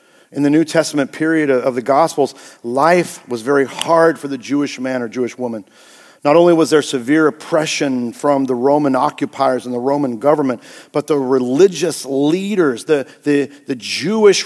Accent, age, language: American, 50-69, English